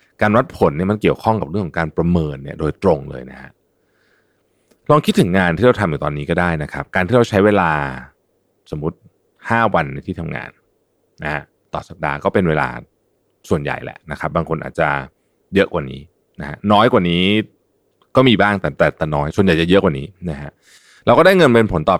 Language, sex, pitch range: Thai, male, 80-110 Hz